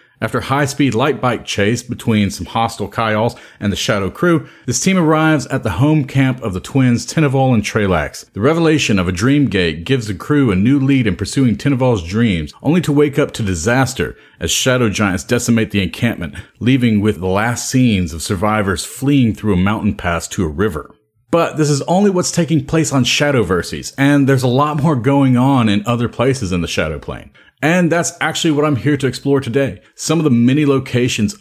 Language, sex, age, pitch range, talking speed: English, male, 40-59, 105-145 Hz, 205 wpm